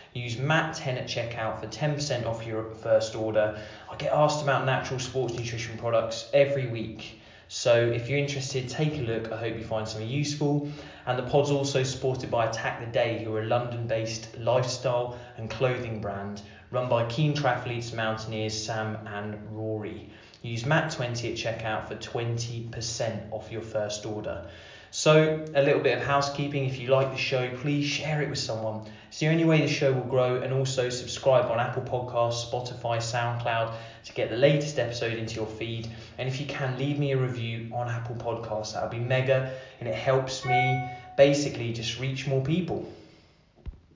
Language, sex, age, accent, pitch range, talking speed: English, male, 20-39, British, 110-135 Hz, 180 wpm